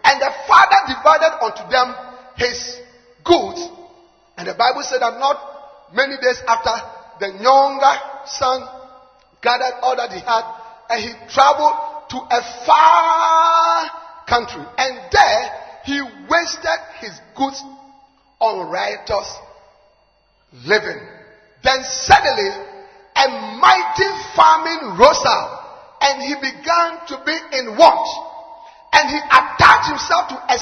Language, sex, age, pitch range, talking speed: English, male, 40-59, 240-335 Hz, 120 wpm